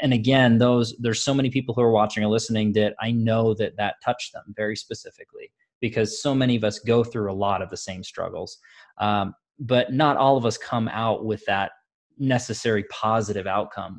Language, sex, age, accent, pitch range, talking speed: English, male, 20-39, American, 105-125 Hz, 200 wpm